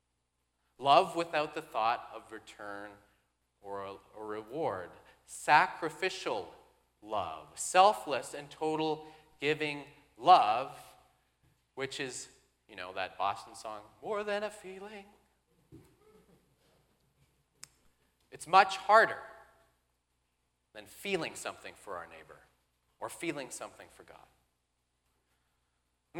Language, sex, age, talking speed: English, male, 30-49, 95 wpm